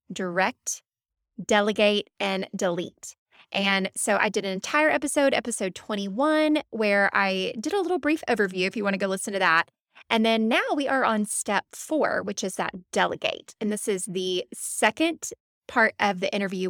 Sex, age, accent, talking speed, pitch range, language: female, 20-39, American, 175 wpm, 190-240 Hz, English